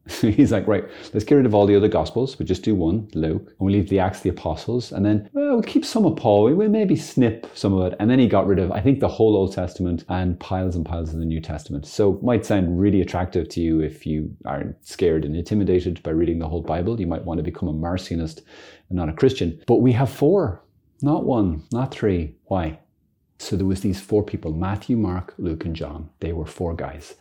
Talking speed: 245 wpm